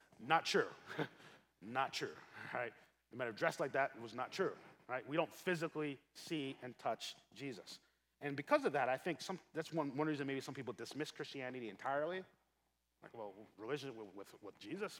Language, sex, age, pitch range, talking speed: English, male, 30-49, 110-165 Hz, 190 wpm